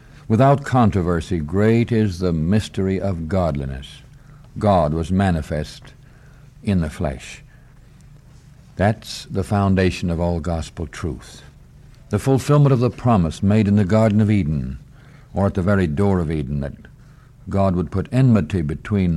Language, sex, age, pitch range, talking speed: English, male, 60-79, 90-130 Hz, 140 wpm